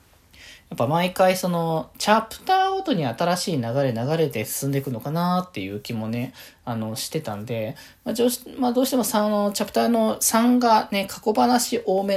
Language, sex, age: Japanese, male, 20-39